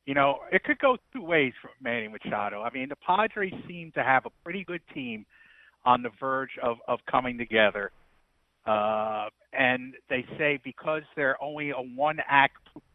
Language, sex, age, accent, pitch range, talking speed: English, male, 50-69, American, 120-165 Hz, 170 wpm